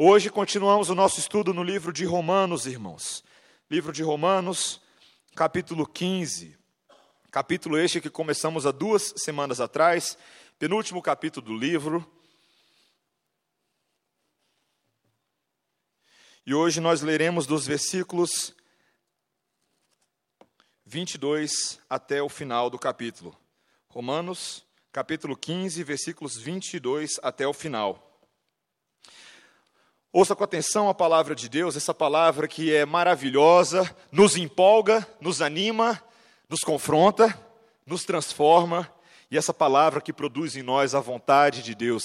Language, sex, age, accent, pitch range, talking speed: Portuguese, male, 40-59, Brazilian, 135-175 Hz, 110 wpm